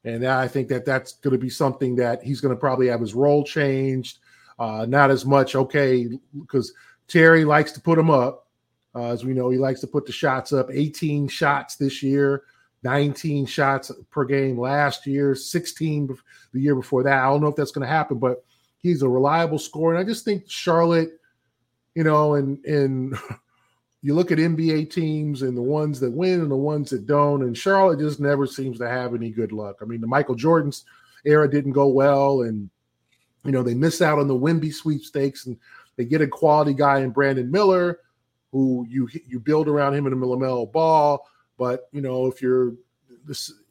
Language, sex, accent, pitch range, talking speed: English, male, American, 130-150 Hz, 200 wpm